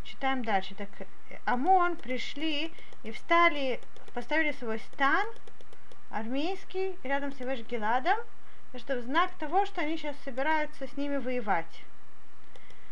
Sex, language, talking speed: female, Russian, 120 wpm